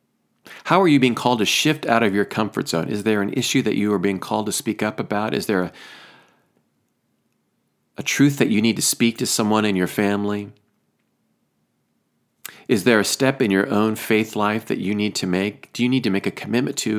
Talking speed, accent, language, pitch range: 220 wpm, American, English, 100-125 Hz